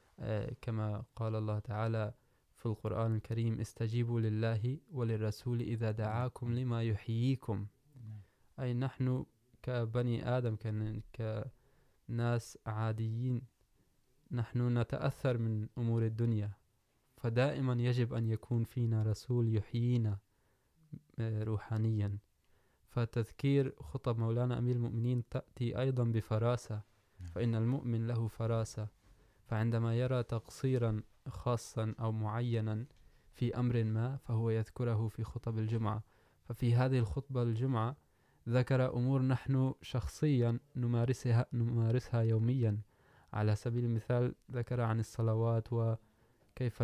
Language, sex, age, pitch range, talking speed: Urdu, male, 20-39, 110-125 Hz, 100 wpm